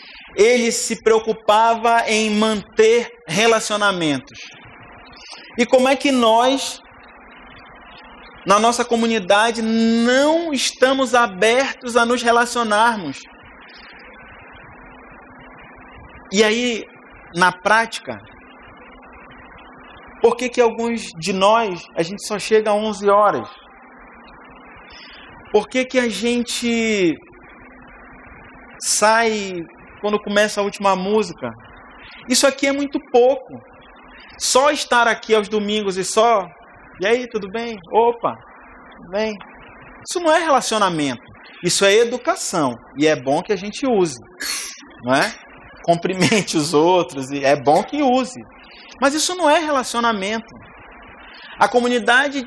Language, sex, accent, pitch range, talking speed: English, male, Brazilian, 200-245 Hz, 110 wpm